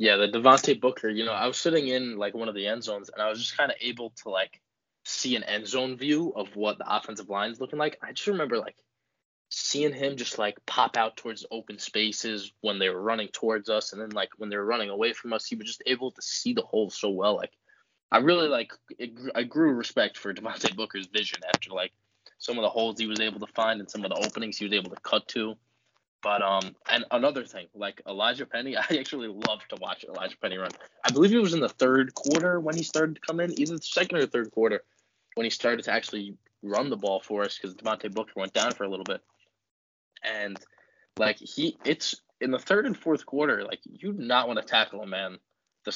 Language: English